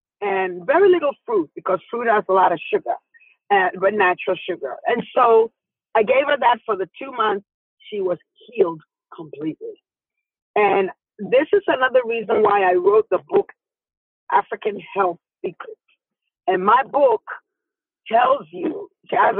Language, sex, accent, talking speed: English, female, American, 150 wpm